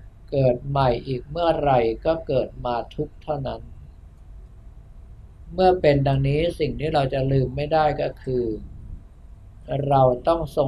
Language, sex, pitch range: Thai, male, 105-150 Hz